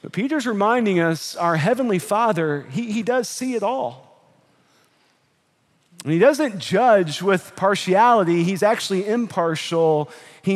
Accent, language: American, English